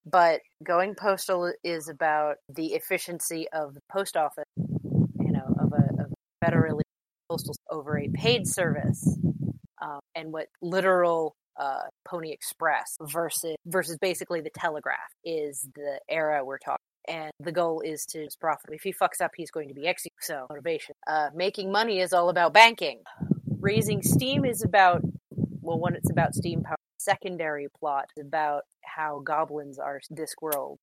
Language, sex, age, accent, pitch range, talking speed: English, female, 30-49, American, 150-175 Hz, 160 wpm